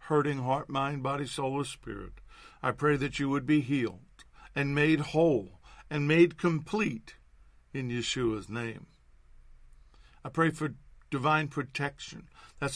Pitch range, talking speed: 125-150 Hz, 135 wpm